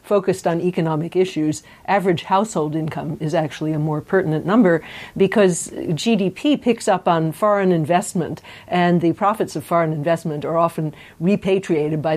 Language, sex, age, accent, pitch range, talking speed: English, female, 50-69, American, 160-200 Hz, 150 wpm